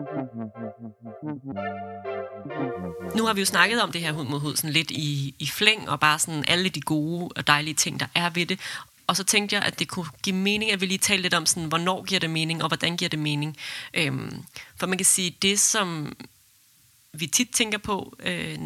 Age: 30-49